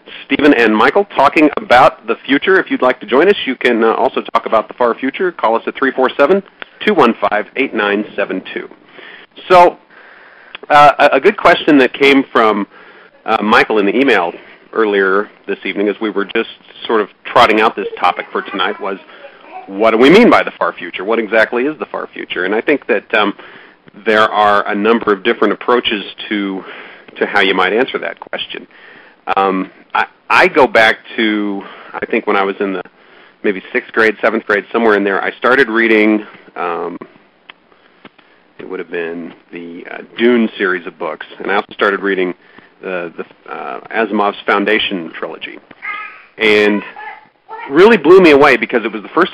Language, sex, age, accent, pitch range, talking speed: English, male, 40-59, American, 100-140 Hz, 175 wpm